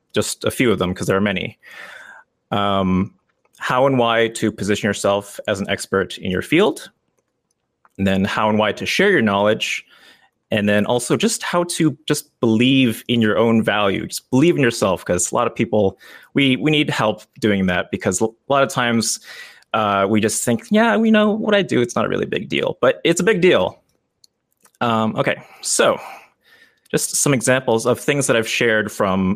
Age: 30-49